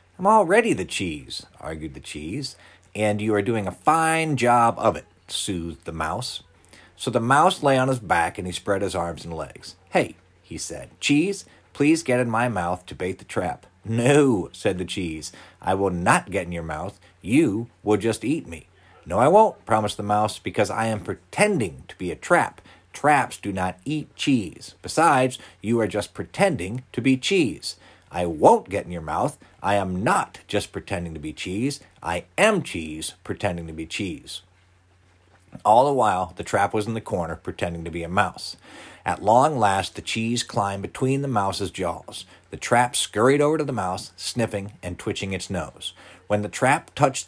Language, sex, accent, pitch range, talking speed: English, male, American, 90-120 Hz, 190 wpm